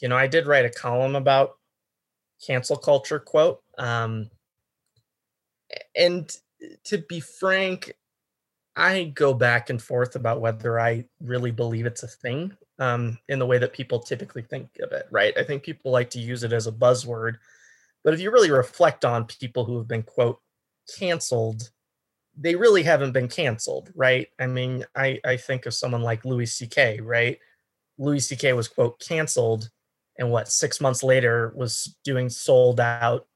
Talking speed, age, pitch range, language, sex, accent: 165 wpm, 20-39, 120-135 Hz, English, male, American